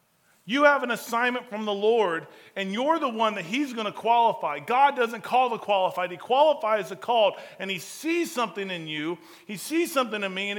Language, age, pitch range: Japanese, 40-59, 225-295 Hz